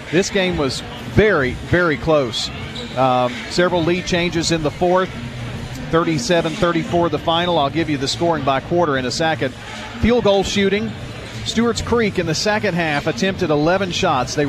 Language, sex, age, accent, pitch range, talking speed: English, male, 40-59, American, 130-175 Hz, 160 wpm